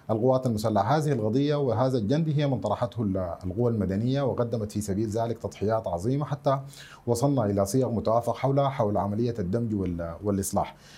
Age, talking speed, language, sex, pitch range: 30-49, 150 wpm, Arabic, male, 100-130 Hz